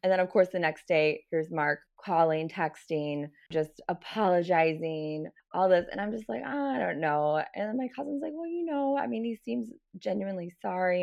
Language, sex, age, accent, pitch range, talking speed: English, female, 20-39, American, 160-195 Hz, 200 wpm